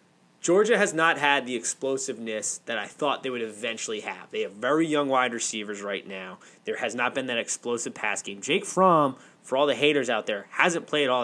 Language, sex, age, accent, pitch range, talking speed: English, male, 20-39, American, 115-155 Hz, 215 wpm